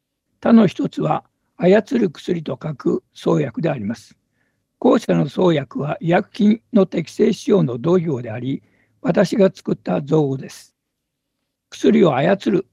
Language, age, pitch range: Japanese, 60-79, 125-195 Hz